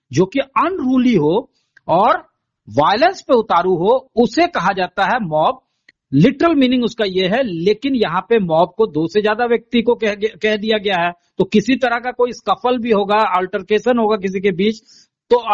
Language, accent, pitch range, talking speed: Hindi, native, 195-245 Hz, 180 wpm